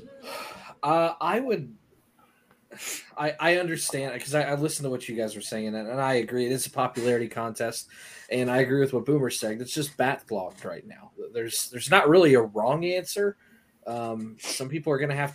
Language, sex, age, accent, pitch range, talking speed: English, male, 20-39, American, 110-140 Hz, 195 wpm